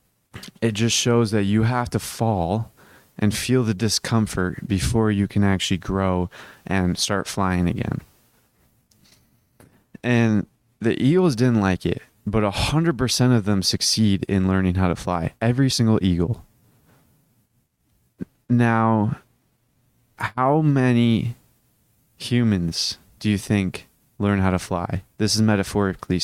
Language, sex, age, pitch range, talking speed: English, male, 20-39, 95-120 Hz, 125 wpm